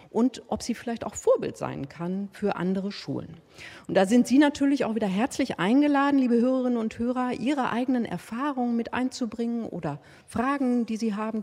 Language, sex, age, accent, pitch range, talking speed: German, female, 40-59, German, 180-240 Hz, 180 wpm